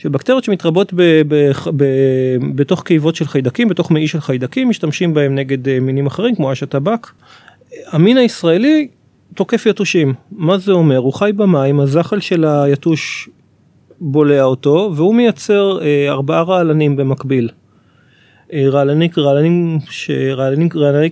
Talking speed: 125 wpm